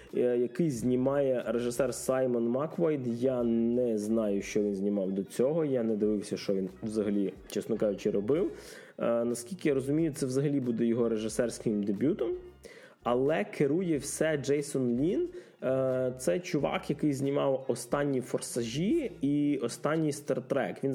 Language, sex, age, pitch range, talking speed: Russian, male, 20-39, 115-155 Hz, 140 wpm